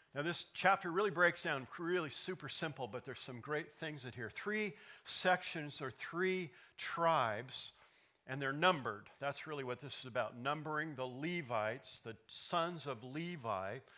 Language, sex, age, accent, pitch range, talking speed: English, male, 50-69, American, 130-175 Hz, 160 wpm